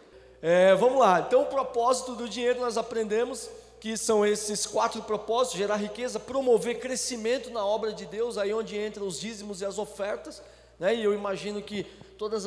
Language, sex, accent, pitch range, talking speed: Portuguese, male, Brazilian, 195-245 Hz, 175 wpm